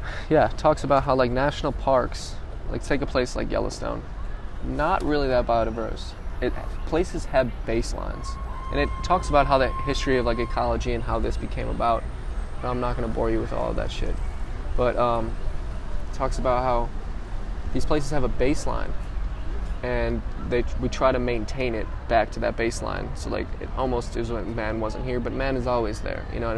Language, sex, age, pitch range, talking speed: English, male, 20-39, 110-125 Hz, 195 wpm